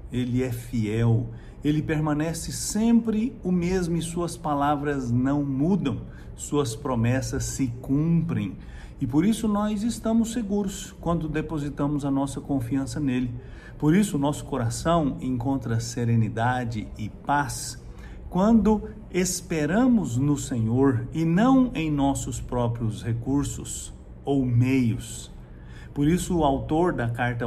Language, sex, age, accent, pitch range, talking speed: English, male, 50-69, Brazilian, 115-165 Hz, 120 wpm